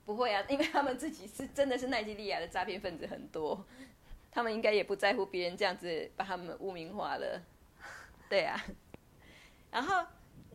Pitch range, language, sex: 180-235 Hz, Chinese, female